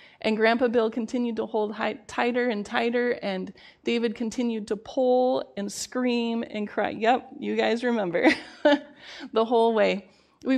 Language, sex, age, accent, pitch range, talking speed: English, female, 30-49, American, 205-245 Hz, 145 wpm